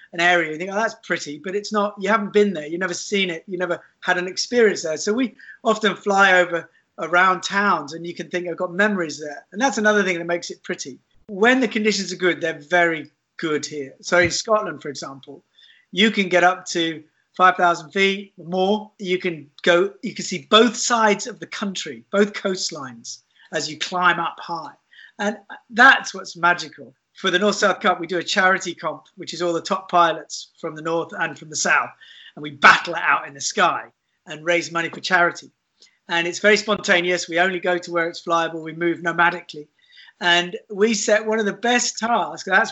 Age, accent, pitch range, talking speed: 40-59, British, 170-205 Hz, 210 wpm